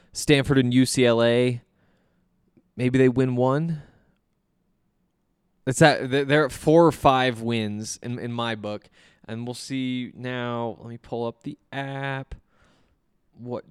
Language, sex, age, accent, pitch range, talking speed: English, male, 20-39, American, 115-145 Hz, 130 wpm